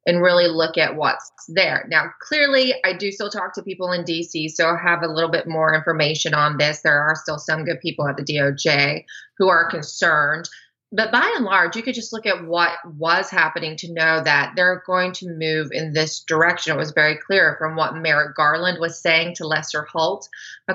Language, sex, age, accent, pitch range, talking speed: English, female, 20-39, American, 155-180 Hz, 215 wpm